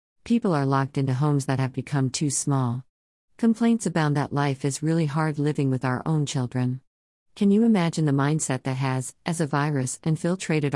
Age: 50-69